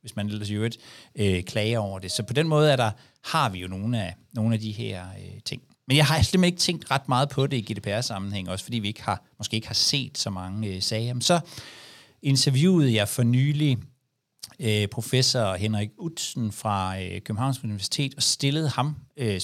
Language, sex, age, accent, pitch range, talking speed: Danish, male, 60-79, native, 105-140 Hz, 210 wpm